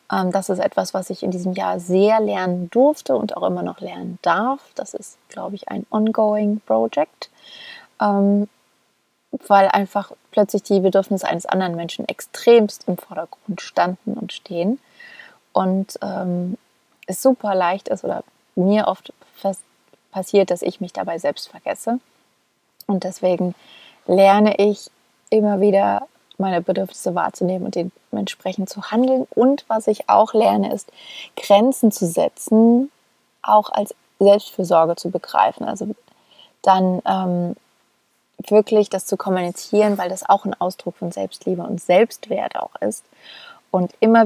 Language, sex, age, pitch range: German, female, 30-49, 180-215 Hz